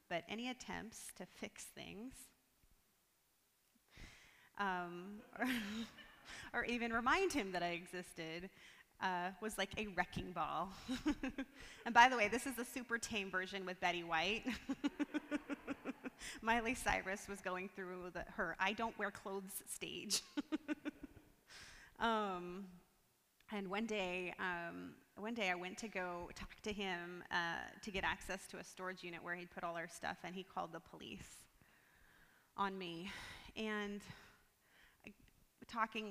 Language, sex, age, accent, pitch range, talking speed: English, female, 30-49, American, 180-225 Hz, 130 wpm